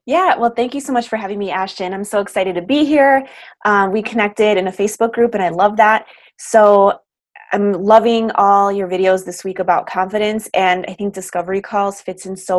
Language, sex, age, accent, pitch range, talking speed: English, female, 20-39, American, 185-220 Hz, 215 wpm